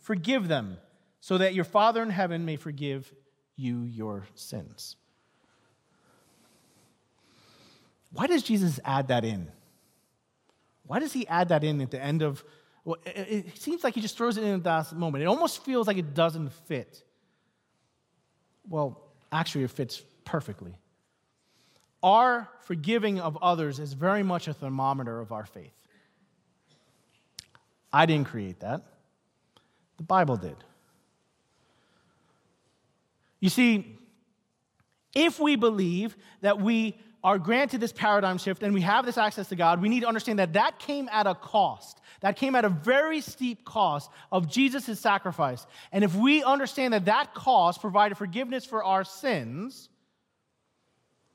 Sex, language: male, English